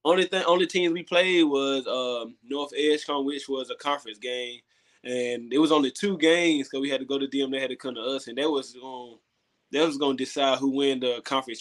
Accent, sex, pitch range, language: American, male, 130-155 Hz, English